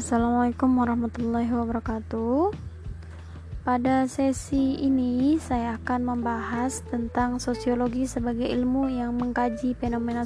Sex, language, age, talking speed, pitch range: female, Indonesian, 20-39, 95 wpm, 235-255 Hz